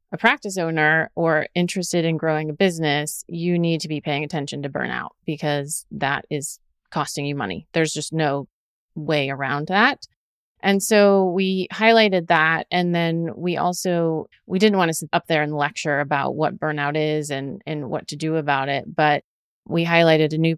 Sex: female